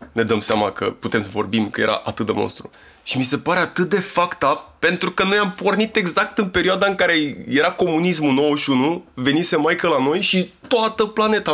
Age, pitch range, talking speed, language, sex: 20-39, 130-185 Hz, 205 wpm, Romanian, male